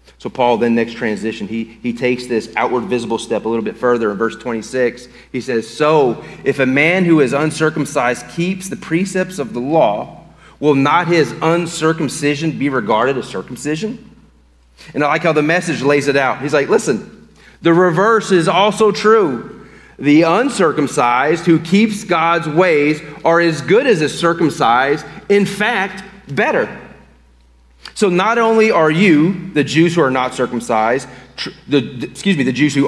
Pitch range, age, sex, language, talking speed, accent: 125-185 Hz, 30-49, male, English, 170 wpm, American